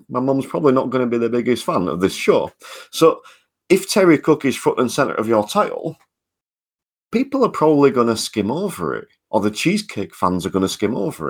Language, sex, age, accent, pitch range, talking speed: English, male, 40-59, British, 105-150 Hz, 200 wpm